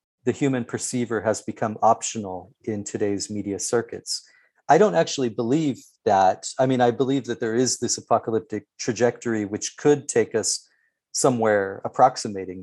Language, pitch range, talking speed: English, 105-130 Hz, 145 wpm